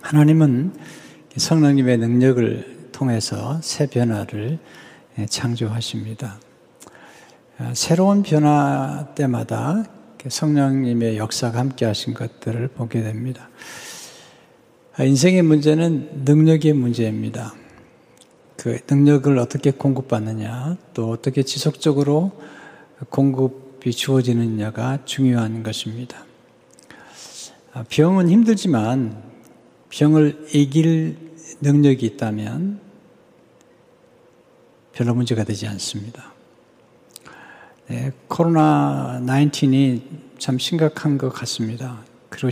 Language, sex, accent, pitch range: Korean, male, native, 120-155 Hz